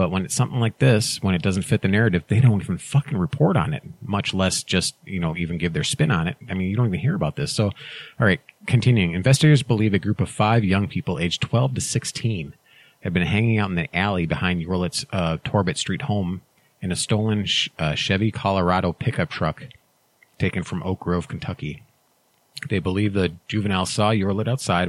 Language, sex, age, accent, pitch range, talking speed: English, male, 30-49, American, 90-115 Hz, 210 wpm